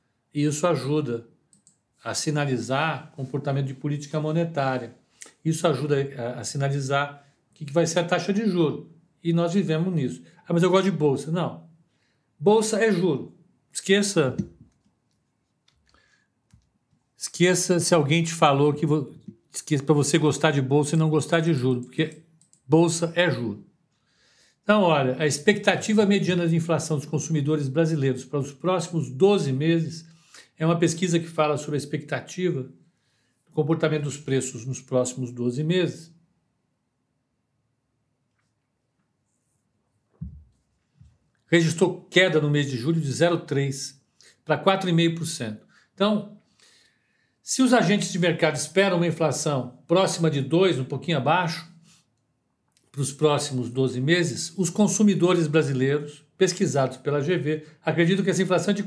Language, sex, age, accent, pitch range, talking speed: Portuguese, male, 60-79, Brazilian, 135-175 Hz, 135 wpm